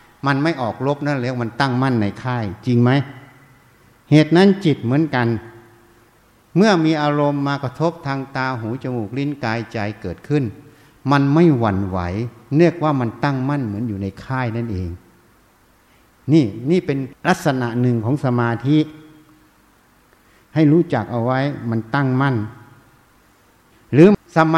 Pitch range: 115-155 Hz